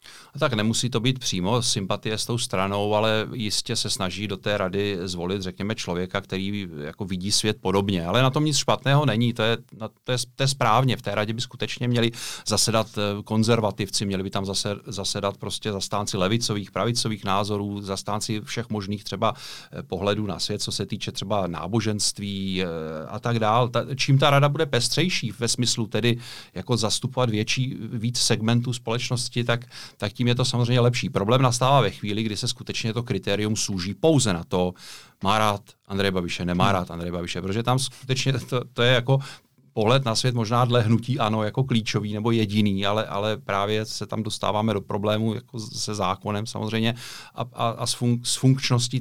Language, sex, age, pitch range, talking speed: Czech, male, 40-59, 100-120 Hz, 180 wpm